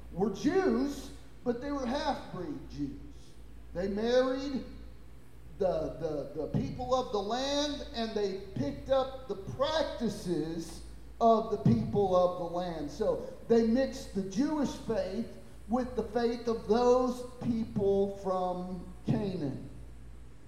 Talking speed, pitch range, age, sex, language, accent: 125 wpm, 160-230 Hz, 40-59, male, English, American